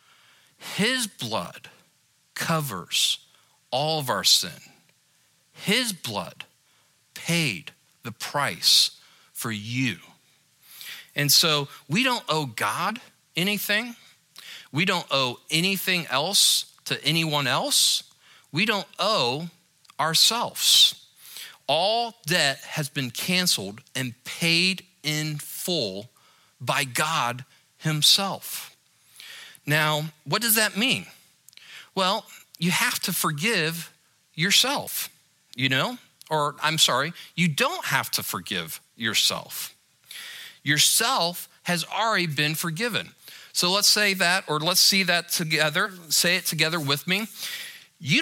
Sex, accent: male, American